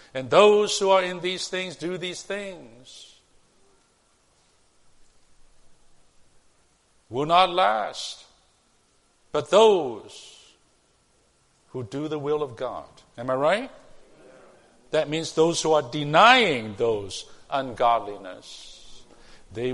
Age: 50-69